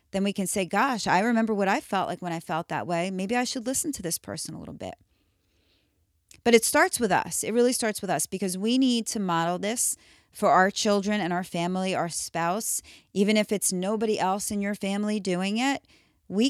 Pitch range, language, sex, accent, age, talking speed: 175-225 Hz, English, female, American, 40-59, 220 wpm